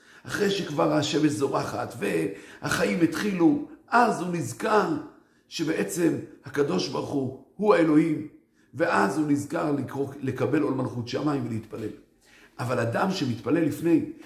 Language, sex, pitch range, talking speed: Hebrew, male, 120-165 Hz, 115 wpm